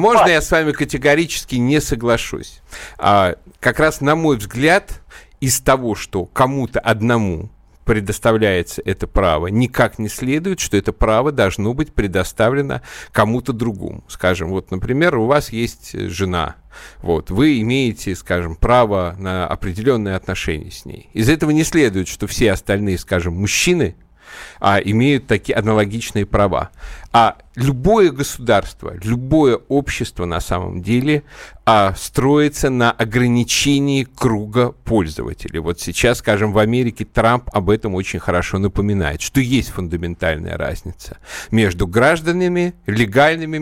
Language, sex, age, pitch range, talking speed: Russian, male, 50-69, 100-135 Hz, 130 wpm